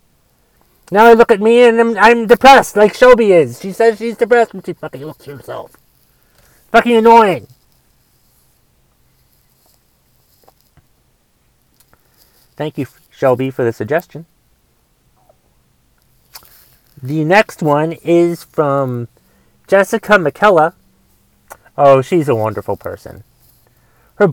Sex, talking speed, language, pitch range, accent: male, 105 wpm, English, 120-170 Hz, American